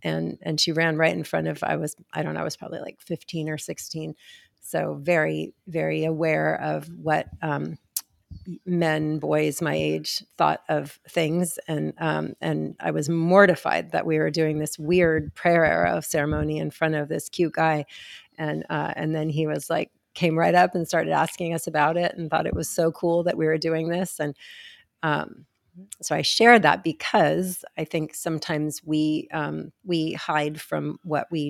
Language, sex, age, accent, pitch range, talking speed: English, female, 40-59, American, 150-170 Hz, 190 wpm